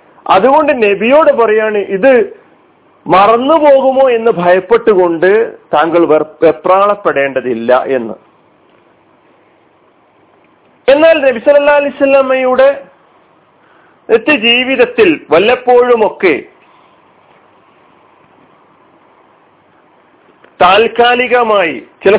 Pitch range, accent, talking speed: 210-290 Hz, native, 50 wpm